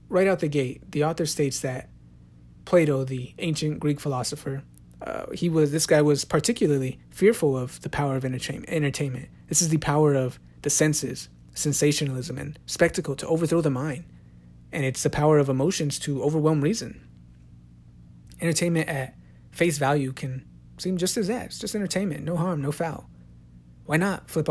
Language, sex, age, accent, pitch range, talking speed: English, male, 30-49, American, 125-165 Hz, 165 wpm